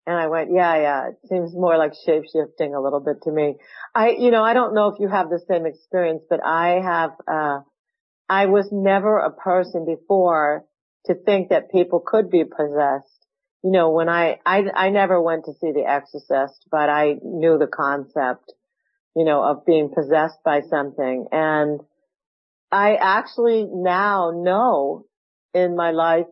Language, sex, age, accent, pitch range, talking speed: English, female, 50-69, American, 150-185 Hz, 175 wpm